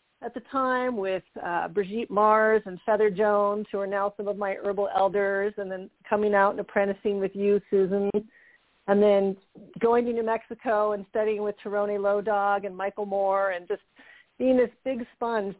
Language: English